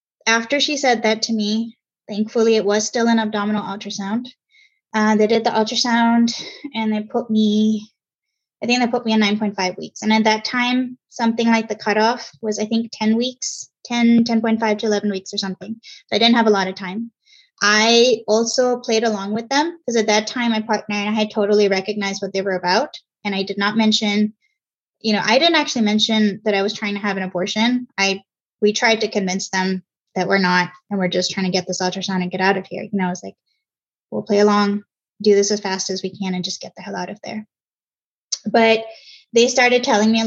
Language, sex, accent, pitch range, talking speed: English, female, American, 195-230 Hz, 220 wpm